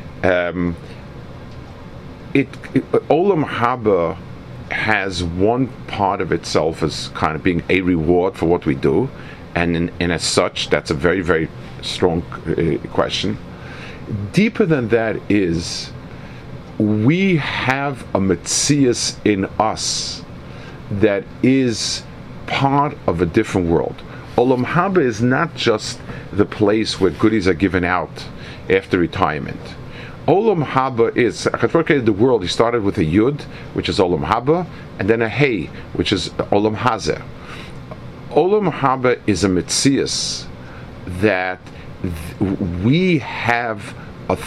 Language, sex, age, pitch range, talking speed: English, male, 50-69, 95-130 Hz, 125 wpm